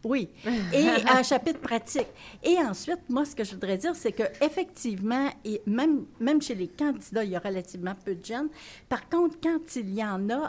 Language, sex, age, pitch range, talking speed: French, female, 60-79, 195-265 Hz, 195 wpm